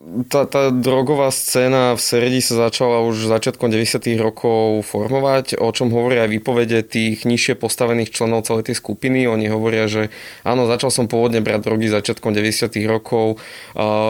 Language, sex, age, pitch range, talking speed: Slovak, male, 20-39, 110-130 Hz, 160 wpm